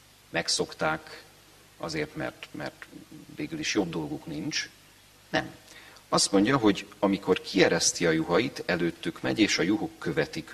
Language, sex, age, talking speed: Hungarian, male, 40-59, 130 wpm